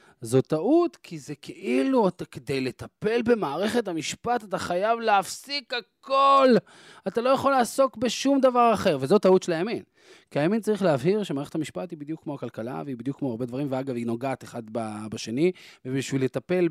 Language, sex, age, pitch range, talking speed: Hebrew, male, 20-39, 125-195 Hz, 165 wpm